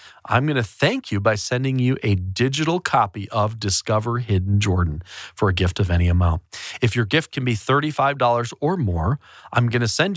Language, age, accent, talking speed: English, 40-59, American, 195 wpm